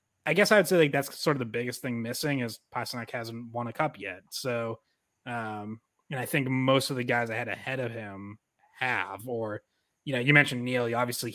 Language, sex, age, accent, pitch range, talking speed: English, male, 20-39, American, 120-140 Hz, 220 wpm